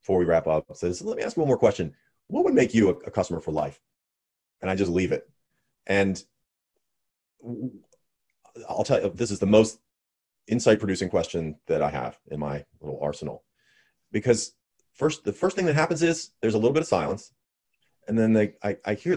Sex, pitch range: male, 90-125 Hz